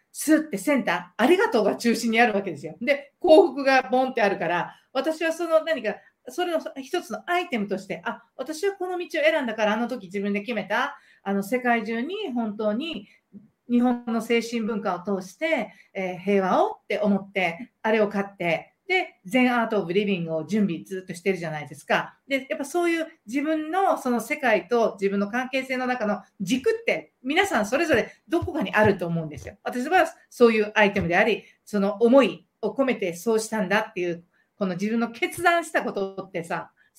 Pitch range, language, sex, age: 195-280 Hz, Japanese, female, 50-69